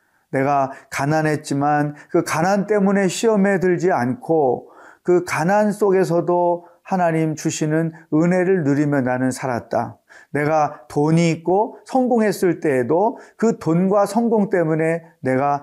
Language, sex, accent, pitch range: Korean, male, native, 150-200 Hz